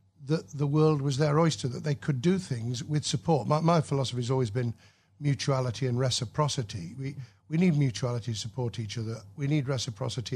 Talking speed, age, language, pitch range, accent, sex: 190 wpm, 50-69, English, 115-140 Hz, British, male